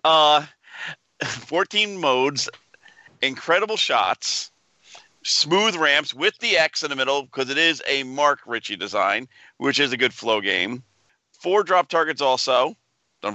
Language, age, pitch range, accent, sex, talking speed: English, 50-69, 125-195 Hz, American, male, 135 wpm